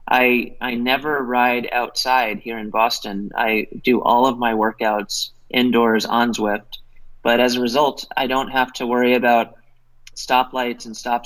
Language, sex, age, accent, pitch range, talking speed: Danish, male, 20-39, American, 110-125 Hz, 160 wpm